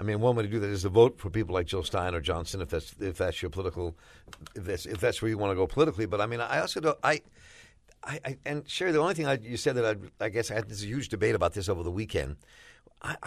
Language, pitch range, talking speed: English, 100-125 Hz, 300 wpm